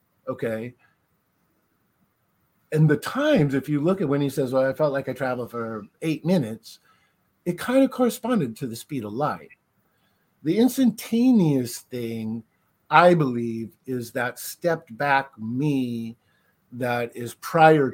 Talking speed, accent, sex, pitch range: 140 wpm, American, male, 115-155 Hz